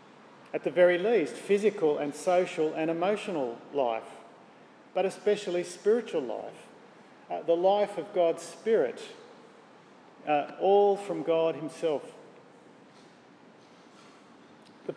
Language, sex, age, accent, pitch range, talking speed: English, male, 40-59, Australian, 165-205 Hz, 105 wpm